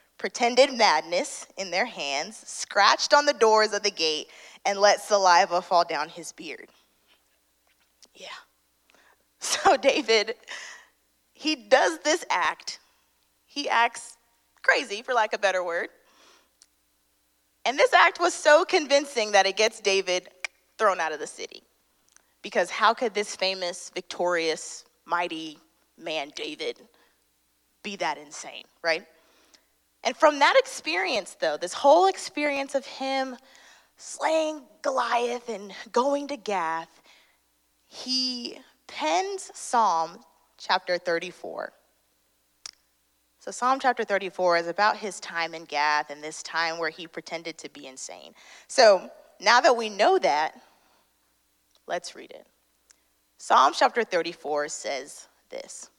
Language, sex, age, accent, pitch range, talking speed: English, female, 20-39, American, 160-265 Hz, 125 wpm